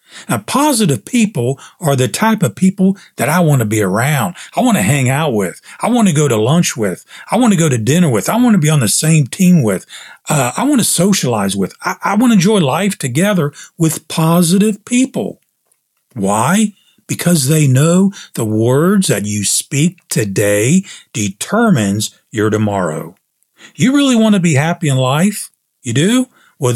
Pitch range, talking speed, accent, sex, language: 120-190 Hz, 185 wpm, American, male, English